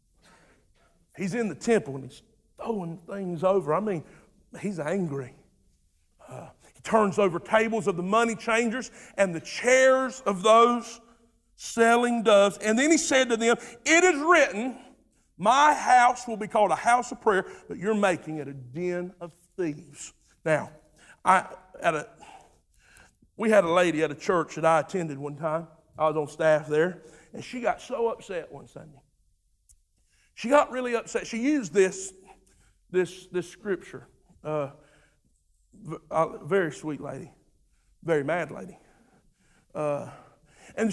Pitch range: 160-230 Hz